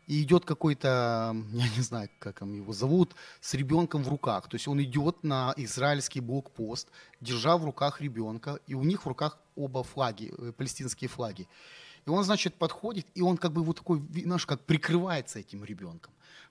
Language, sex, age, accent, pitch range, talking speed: Ukrainian, male, 30-49, native, 125-175 Hz, 175 wpm